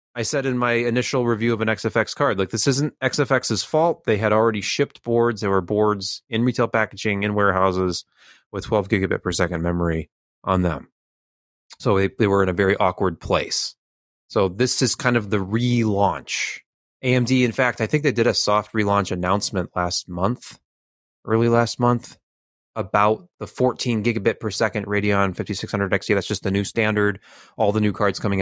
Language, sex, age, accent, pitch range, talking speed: English, male, 20-39, American, 95-115 Hz, 185 wpm